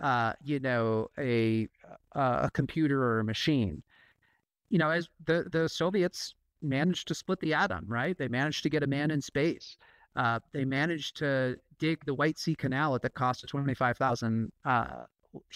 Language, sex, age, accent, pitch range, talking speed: English, male, 40-59, American, 135-170 Hz, 170 wpm